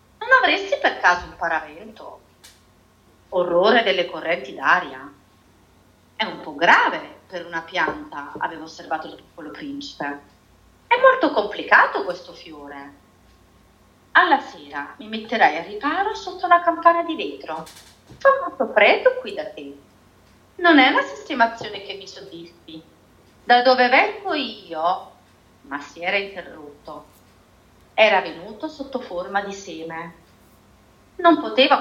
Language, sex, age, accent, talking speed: Italian, female, 40-59, native, 125 wpm